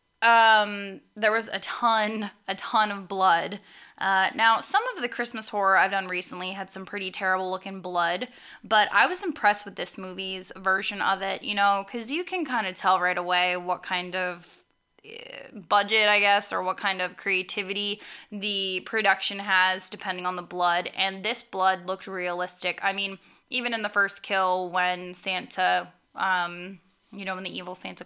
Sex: female